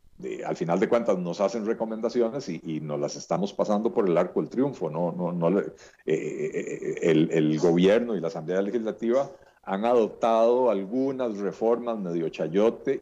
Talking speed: 175 wpm